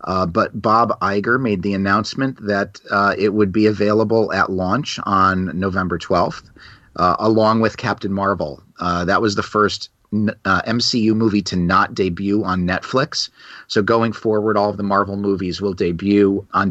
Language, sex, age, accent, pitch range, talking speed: English, male, 40-59, American, 100-115 Hz, 170 wpm